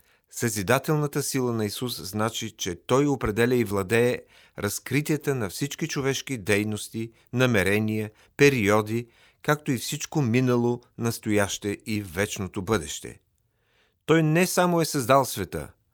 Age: 40-59